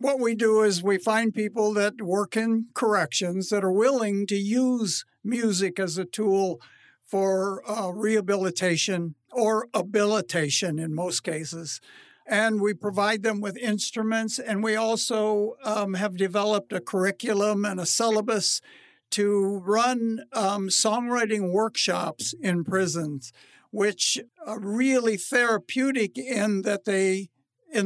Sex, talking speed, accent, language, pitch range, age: male, 130 wpm, American, English, 190-225 Hz, 60-79